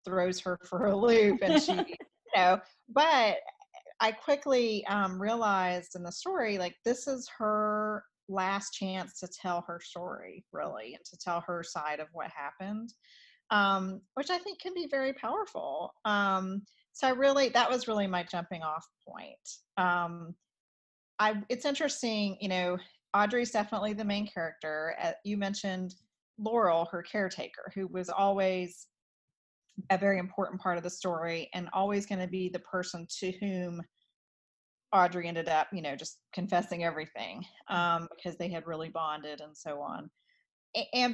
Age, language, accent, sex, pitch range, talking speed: 40-59, English, American, female, 170-215 Hz, 160 wpm